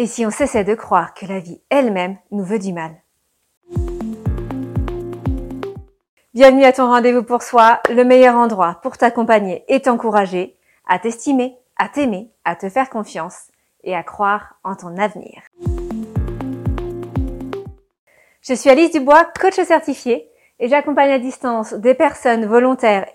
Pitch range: 180-260 Hz